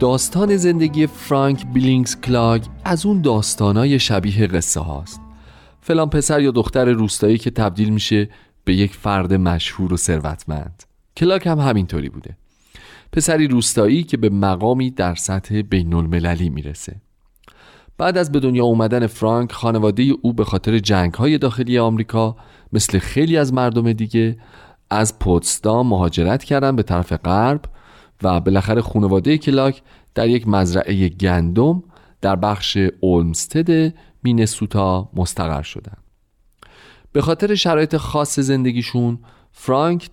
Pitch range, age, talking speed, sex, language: 95-135 Hz, 40-59, 125 wpm, male, Persian